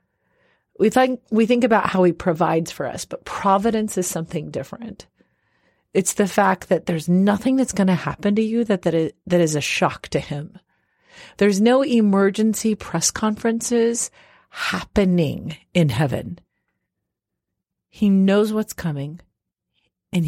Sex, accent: female, American